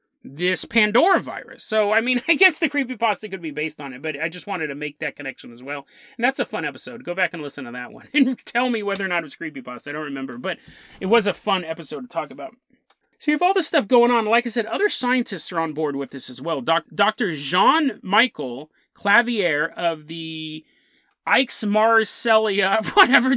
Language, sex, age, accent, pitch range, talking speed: English, male, 30-49, American, 170-255 Hz, 220 wpm